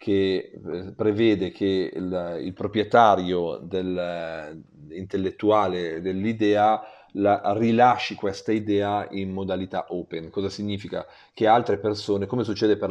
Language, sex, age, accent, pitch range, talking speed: Italian, male, 40-59, native, 95-110 Hz, 110 wpm